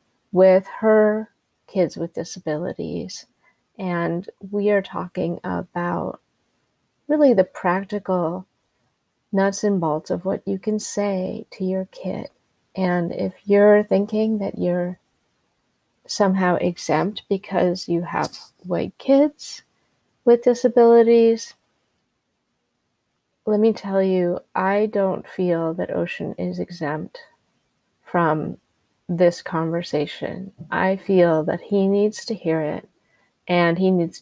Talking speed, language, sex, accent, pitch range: 110 wpm, English, female, American, 170-205 Hz